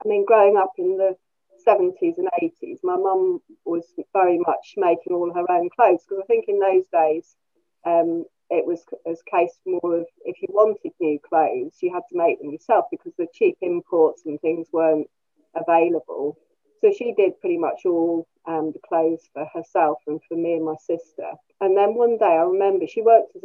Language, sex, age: English, female, 40-59